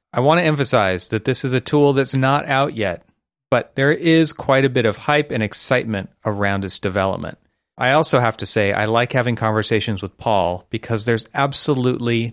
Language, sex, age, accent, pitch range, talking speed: English, male, 30-49, American, 105-135 Hz, 195 wpm